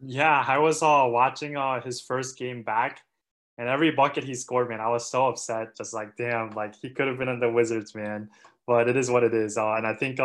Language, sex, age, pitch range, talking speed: English, male, 20-39, 115-135 Hz, 245 wpm